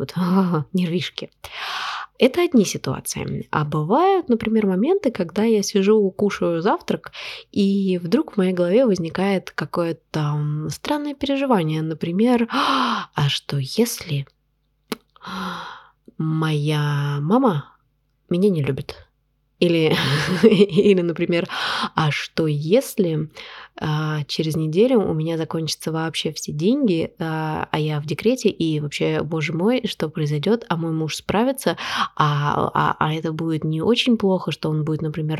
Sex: female